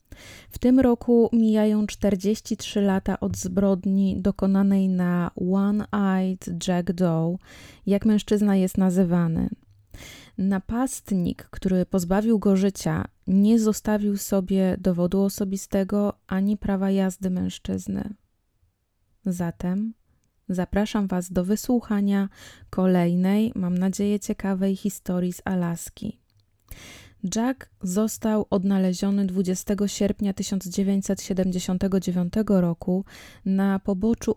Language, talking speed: Polish, 90 wpm